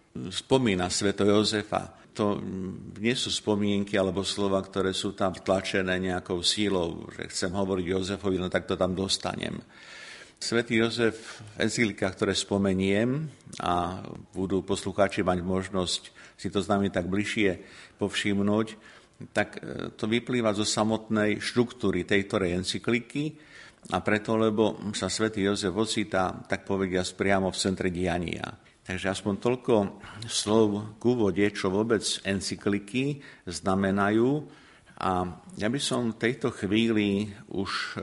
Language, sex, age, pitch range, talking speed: Slovak, male, 50-69, 95-110 Hz, 130 wpm